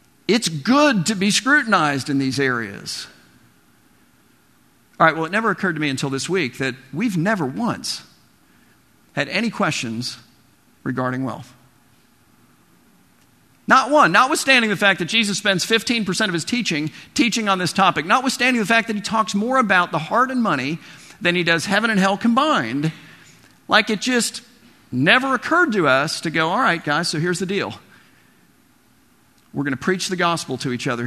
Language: English